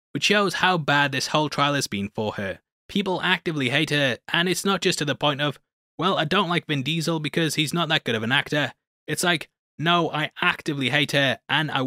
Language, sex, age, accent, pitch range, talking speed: English, male, 20-39, British, 135-170 Hz, 235 wpm